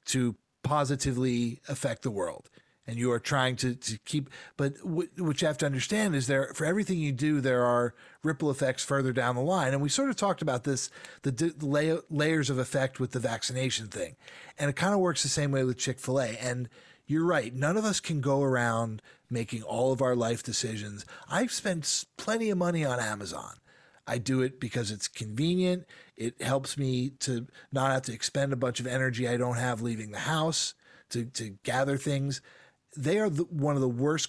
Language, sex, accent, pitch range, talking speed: English, male, American, 125-150 Hz, 200 wpm